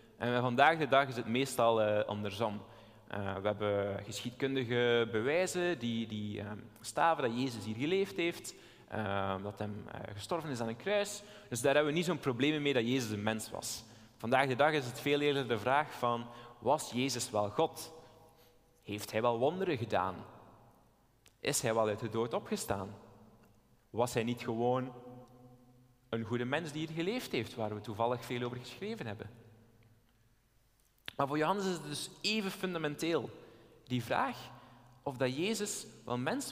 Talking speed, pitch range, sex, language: 170 wpm, 115-160 Hz, male, Dutch